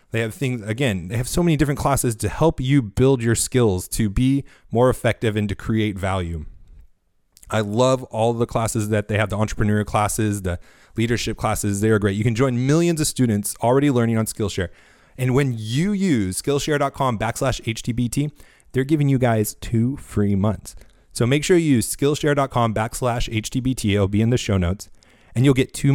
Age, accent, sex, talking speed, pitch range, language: 30-49, American, male, 190 wpm, 100-135 Hz, English